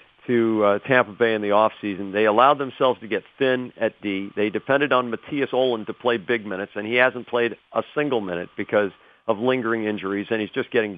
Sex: male